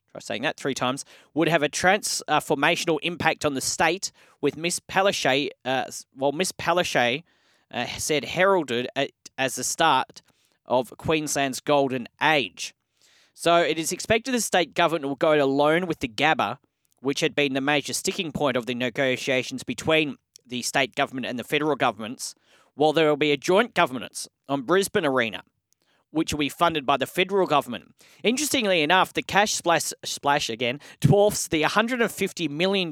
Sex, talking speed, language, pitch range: male, 165 wpm, English, 140-170 Hz